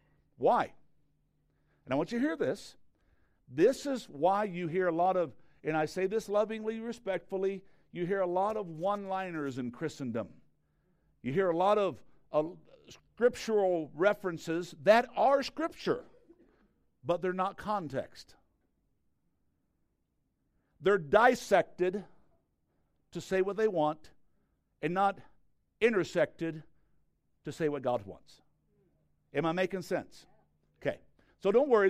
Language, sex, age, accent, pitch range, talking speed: English, male, 60-79, American, 145-200 Hz, 130 wpm